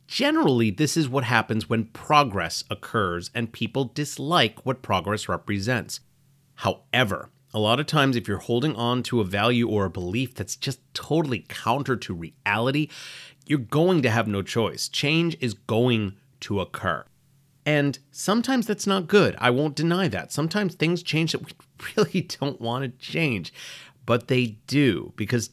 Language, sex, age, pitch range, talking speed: English, male, 30-49, 110-145 Hz, 160 wpm